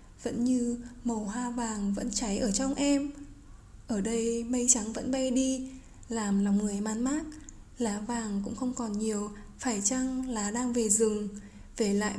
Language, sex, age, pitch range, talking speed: Vietnamese, female, 20-39, 205-255 Hz, 175 wpm